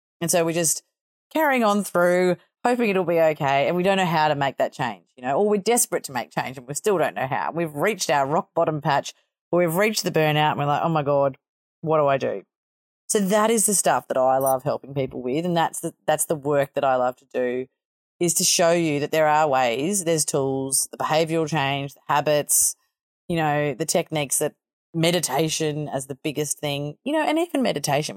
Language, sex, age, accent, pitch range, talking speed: English, female, 30-49, Australian, 140-180 Hz, 225 wpm